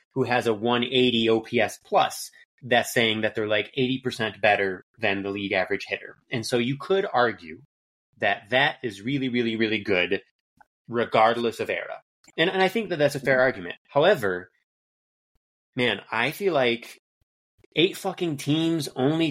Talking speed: 160 wpm